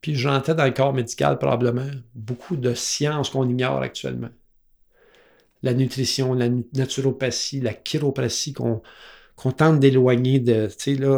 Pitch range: 115-135 Hz